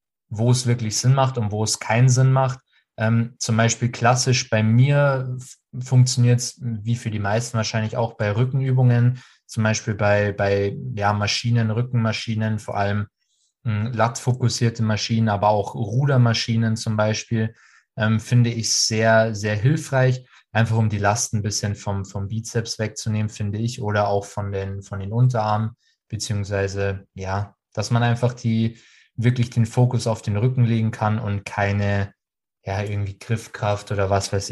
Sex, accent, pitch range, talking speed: male, German, 105-120 Hz, 160 wpm